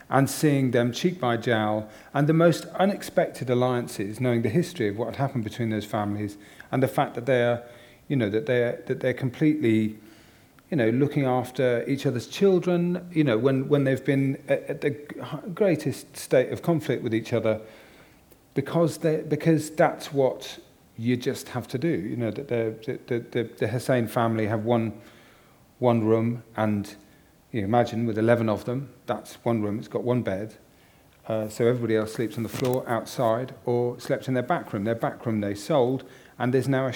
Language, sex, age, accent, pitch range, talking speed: English, male, 40-59, British, 110-140 Hz, 190 wpm